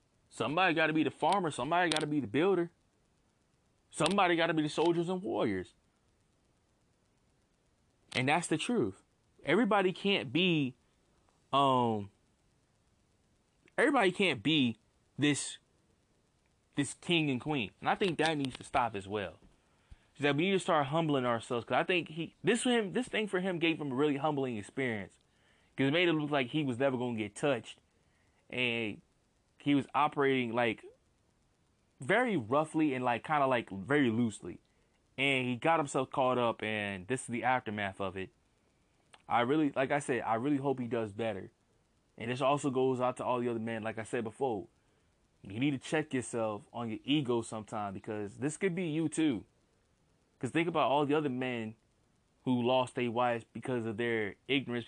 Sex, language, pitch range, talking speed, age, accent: male, English, 115-155 Hz, 180 wpm, 20-39, American